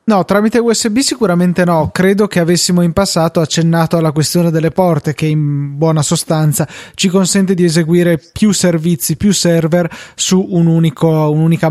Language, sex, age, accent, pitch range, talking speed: Italian, male, 20-39, native, 155-185 Hz, 160 wpm